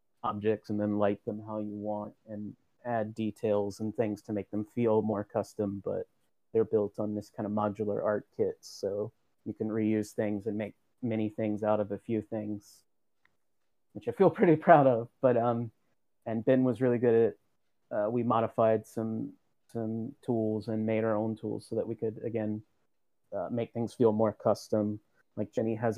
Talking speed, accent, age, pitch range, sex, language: 190 wpm, American, 30-49, 110-115 Hz, male, English